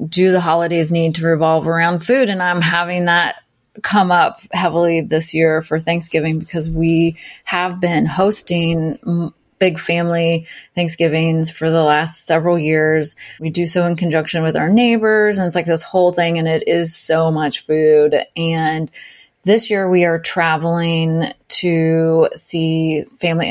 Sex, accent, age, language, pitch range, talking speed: female, American, 20-39, English, 160-200 Hz, 155 wpm